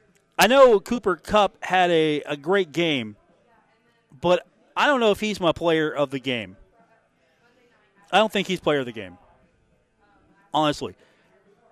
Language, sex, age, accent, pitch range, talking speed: English, male, 40-59, American, 145-190 Hz, 150 wpm